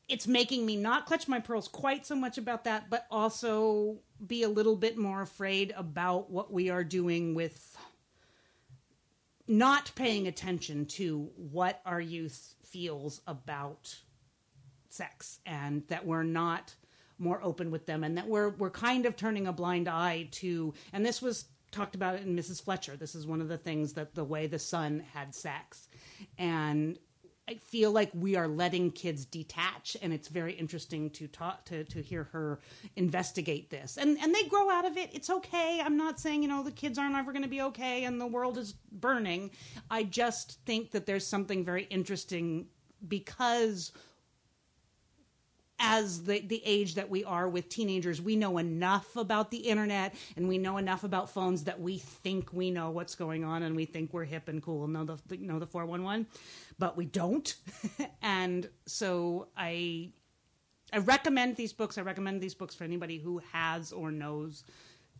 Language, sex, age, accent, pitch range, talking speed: English, female, 40-59, American, 165-215 Hz, 180 wpm